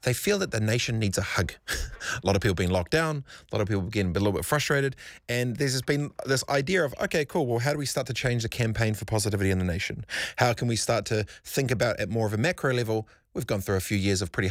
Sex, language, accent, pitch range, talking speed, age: male, English, Australian, 105-130 Hz, 275 wpm, 30-49